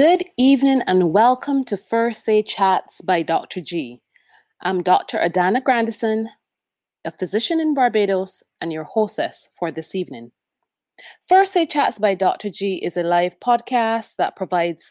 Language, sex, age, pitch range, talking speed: English, female, 30-49, 175-245 Hz, 150 wpm